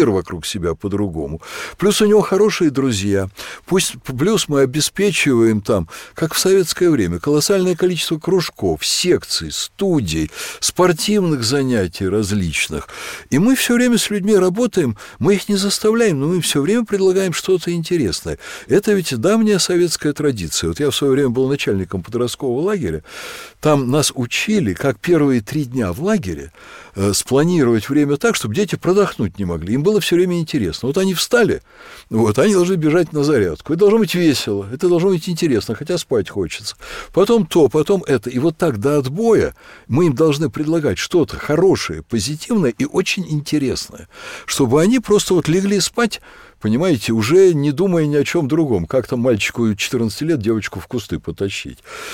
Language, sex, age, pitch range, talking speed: Russian, male, 60-79, 130-190 Hz, 165 wpm